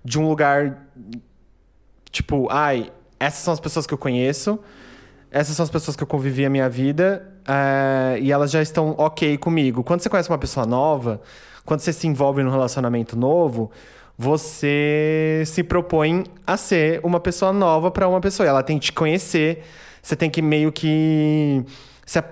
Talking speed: 170 wpm